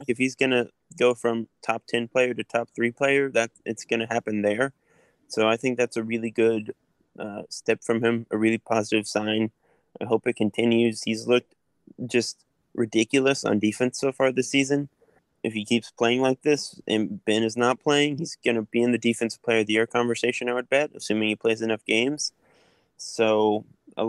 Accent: American